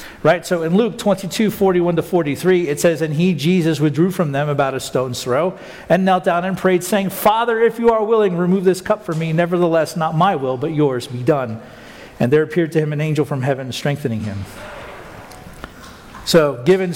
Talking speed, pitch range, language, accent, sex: 200 wpm, 145-185 Hz, English, American, male